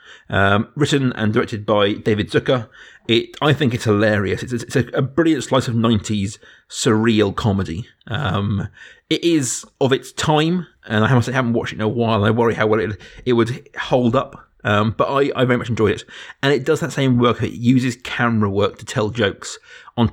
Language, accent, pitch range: English, British, 105-125 Hz